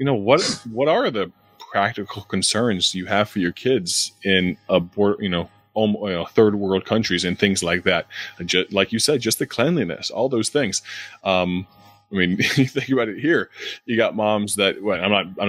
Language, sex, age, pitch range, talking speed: English, male, 20-39, 90-105 Hz, 200 wpm